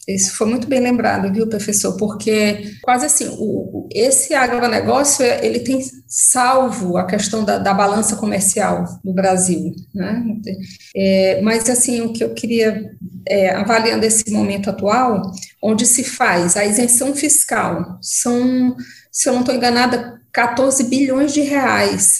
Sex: female